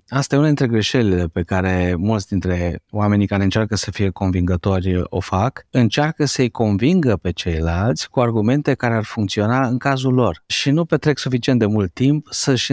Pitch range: 95-120 Hz